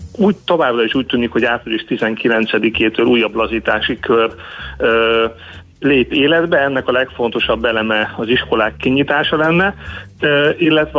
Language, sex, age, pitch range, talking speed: Hungarian, male, 40-59, 115-130 Hz, 130 wpm